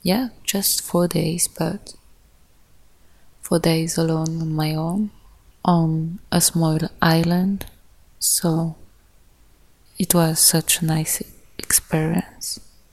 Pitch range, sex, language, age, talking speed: 155-175 Hz, female, English, 20-39, 100 wpm